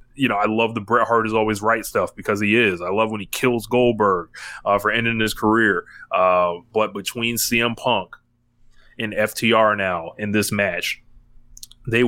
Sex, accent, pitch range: male, American, 100-120 Hz